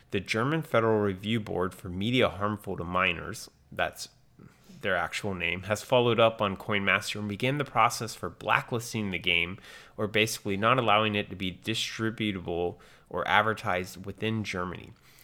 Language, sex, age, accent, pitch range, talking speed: English, male, 30-49, American, 95-115 Hz, 160 wpm